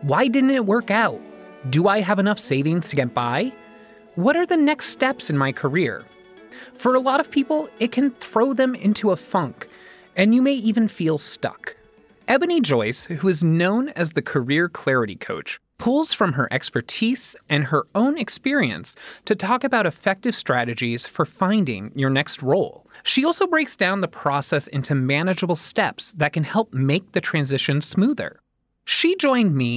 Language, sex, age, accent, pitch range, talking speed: English, male, 30-49, American, 140-235 Hz, 175 wpm